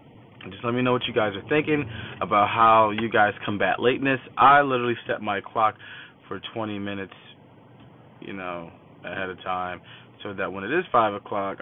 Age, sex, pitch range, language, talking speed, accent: 20-39, male, 100-120 Hz, English, 180 wpm, American